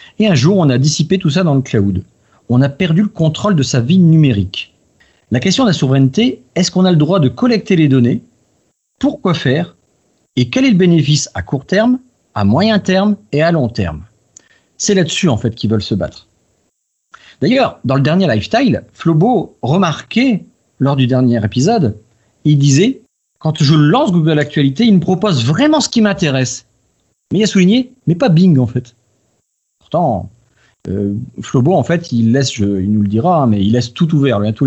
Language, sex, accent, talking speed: French, male, French, 205 wpm